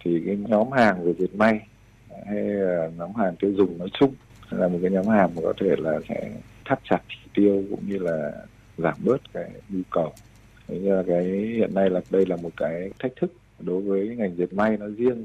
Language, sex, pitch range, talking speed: Vietnamese, male, 90-110 Hz, 225 wpm